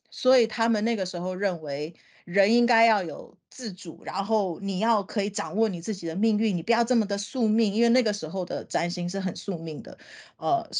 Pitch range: 175-220 Hz